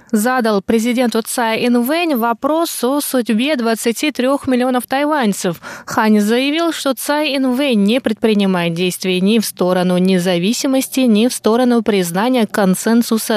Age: 20-39